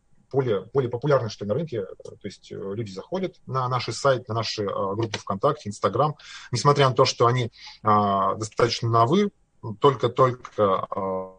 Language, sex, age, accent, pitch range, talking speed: Russian, male, 20-39, native, 105-140 Hz, 135 wpm